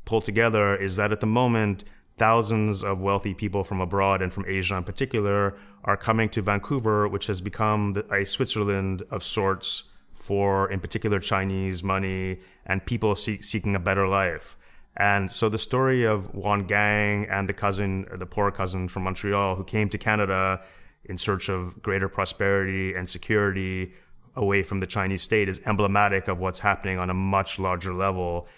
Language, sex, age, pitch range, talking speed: English, male, 30-49, 95-105 Hz, 170 wpm